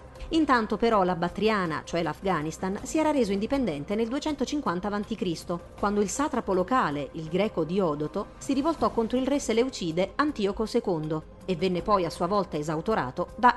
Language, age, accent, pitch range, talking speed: Italian, 40-59, native, 175-240 Hz, 160 wpm